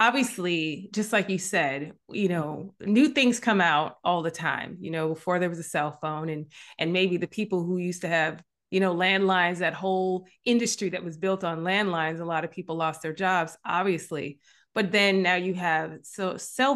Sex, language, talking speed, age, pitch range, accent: female, English, 200 wpm, 30-49, 170-205 Hz, American